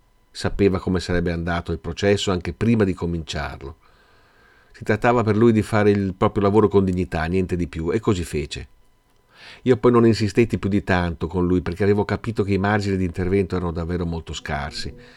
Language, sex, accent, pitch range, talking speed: Italian, male, native, 90-105 Hz, 190 wpm